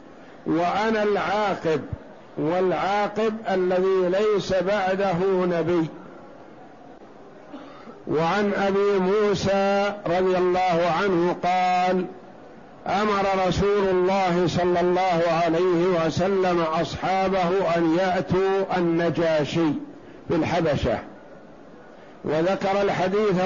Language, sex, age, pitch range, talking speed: Arabic, male, 50-69, 175-195 Hz, 70 wpm